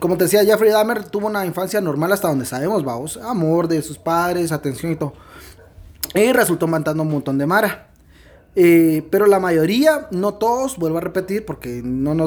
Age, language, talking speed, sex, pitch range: 30-49, Spanish, 185 wpm, male, 145-195 Hz